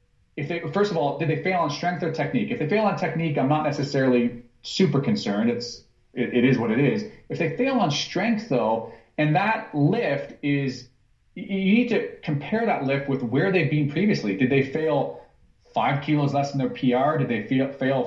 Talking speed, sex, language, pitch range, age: 205 wpm, male, English, 125-160 Hz, 30-49